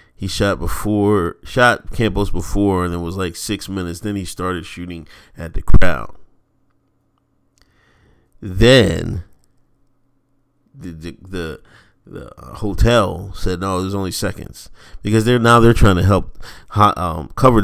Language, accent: English, American